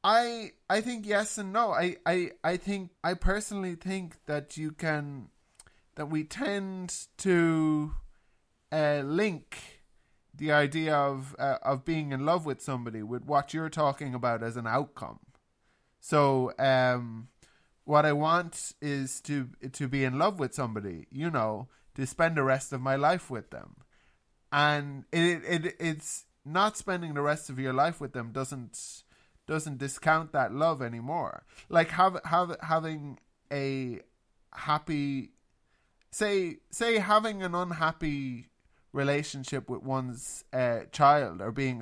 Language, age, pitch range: English, 20-39, 130-165 Hz